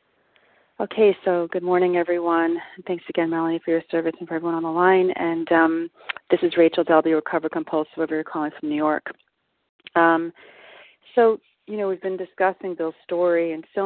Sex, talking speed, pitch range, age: female, 180 wpm, 165-190 Hz, 40-59